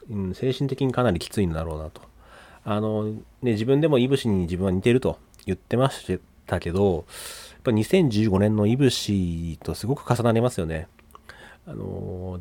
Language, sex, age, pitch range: Japanese, male, 30-49, 90-130 Hz